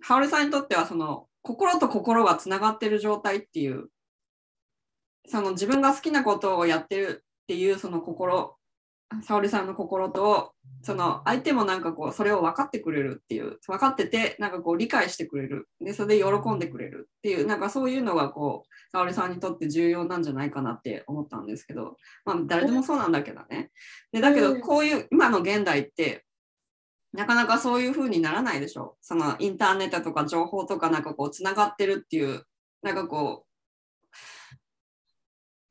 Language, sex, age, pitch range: Japanese, female, 20-39, 170-255 Hz